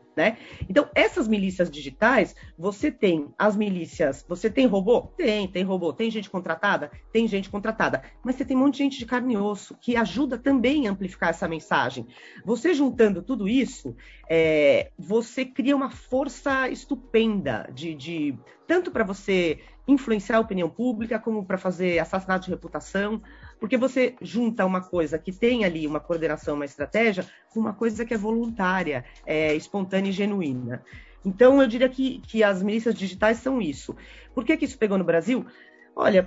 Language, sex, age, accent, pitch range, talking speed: Portuguese, female, 40-59, Brazilian, 180-235 Hz, 165 wpm